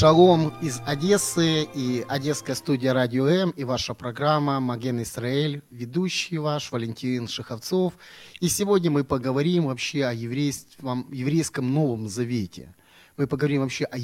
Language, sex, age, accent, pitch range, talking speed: Ukrainian, male, 30-49, native, 115-150 Hz, 135 wpm